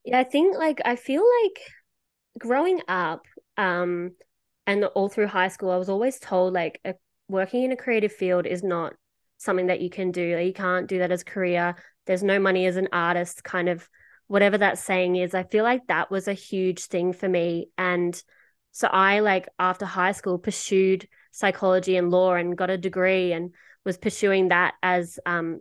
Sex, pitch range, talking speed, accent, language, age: female, 180-215 Hz, 195 wpm, Australian, English, 20-39